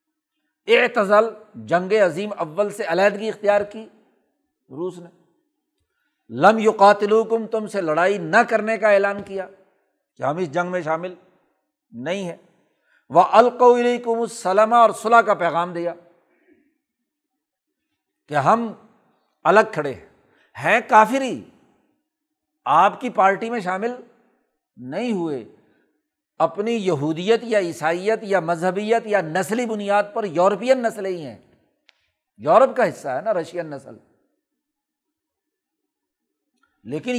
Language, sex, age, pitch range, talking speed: Urdu, male, 60-79, 190-255 Hz, 120 wpm